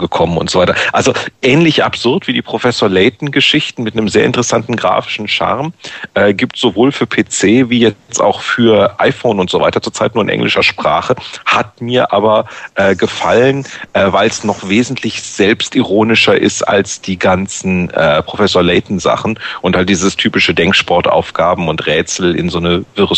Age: 40-59